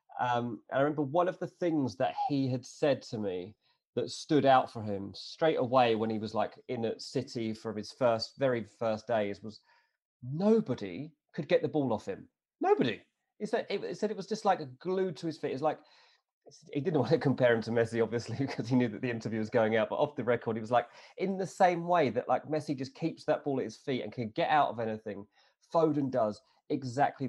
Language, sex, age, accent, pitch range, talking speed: English, male, 30-49, British, 120-165 Hz, 230 wpm